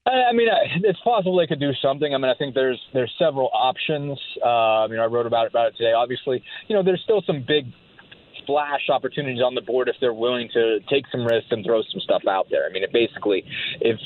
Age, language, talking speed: 30-49, English, 250 wpm